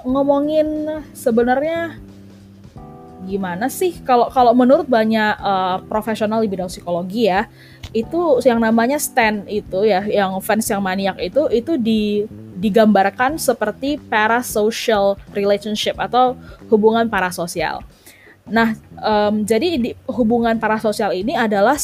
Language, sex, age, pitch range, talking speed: Indonesian, female, 20-39, 195-250 Hz, 110 wpm